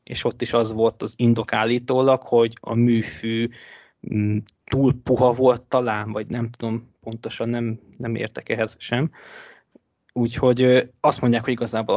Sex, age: male, 20-39